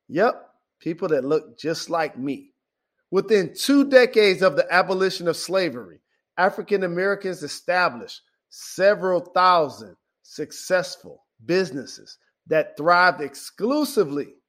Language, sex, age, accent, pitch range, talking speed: English, male, 50-69, American, 150-200 Hz, 105 wpm